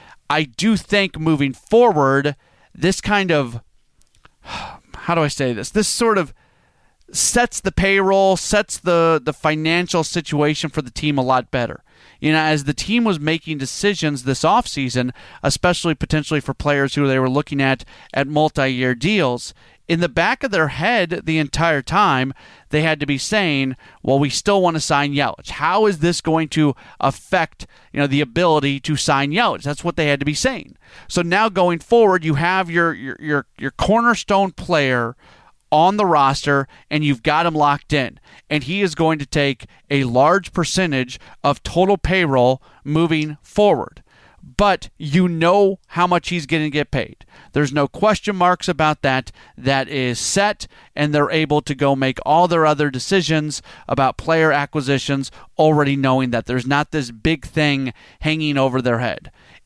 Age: 30-49